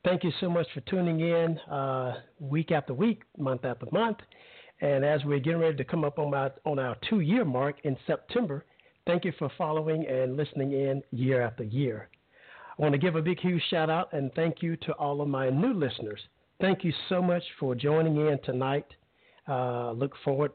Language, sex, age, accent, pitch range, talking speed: English, male, 50-69, American, 135-170 Hz, 195 wpm